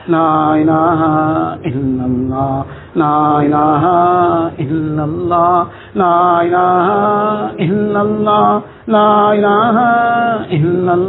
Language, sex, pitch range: English, male, 155-205 Hz